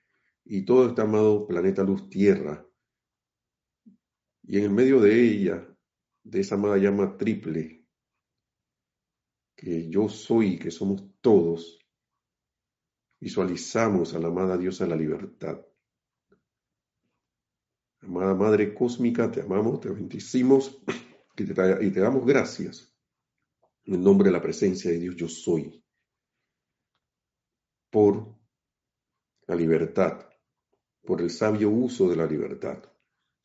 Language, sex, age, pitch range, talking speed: Spanish, male, 50-69, 90-120 Hz, 115 wpm